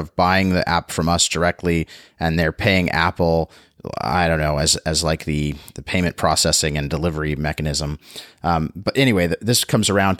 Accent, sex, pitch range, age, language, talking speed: American, male, 85-105 Hz, 30-49, English, 175 wpm